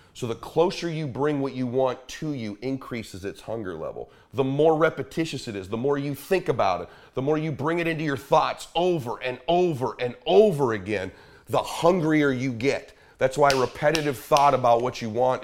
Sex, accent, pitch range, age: male, American, 135-170 Hz, 40-59